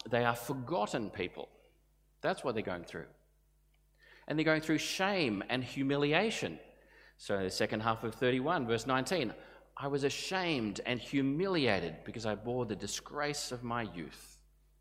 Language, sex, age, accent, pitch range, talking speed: English, male, 30-49, Australian, 105-140 Hz, 150 wpm